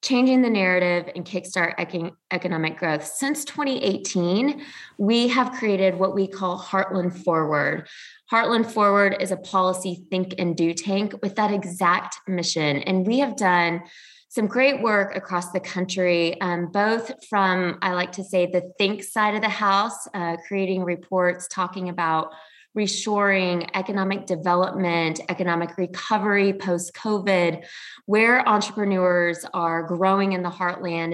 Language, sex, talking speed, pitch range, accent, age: English, female, 135 wpm, 175-210 Hz, American, 20-39